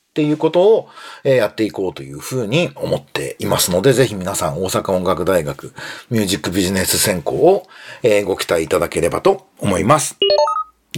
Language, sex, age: Japanese, male, 40-59